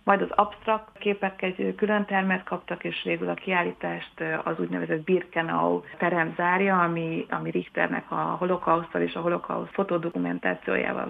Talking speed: 140 wpm